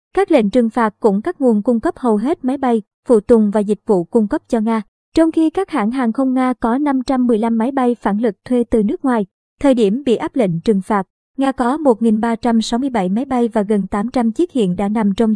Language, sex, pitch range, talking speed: Vietnamese, male, 215-260 Hz, 230 wpm